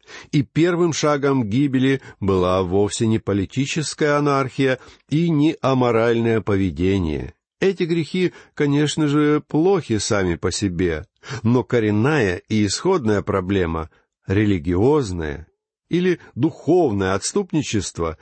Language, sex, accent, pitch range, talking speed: Russian, male, native, 95-145 Hz, 100 wpm